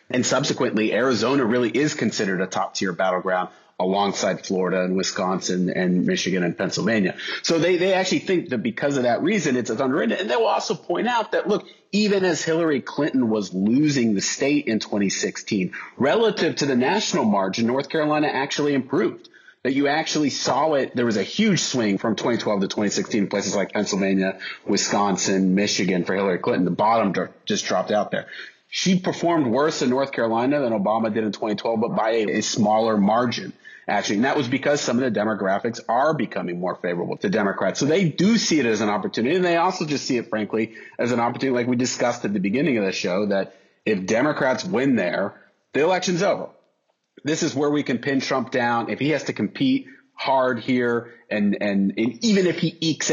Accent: American